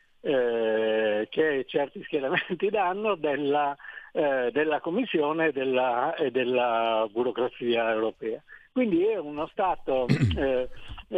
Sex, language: male, Italian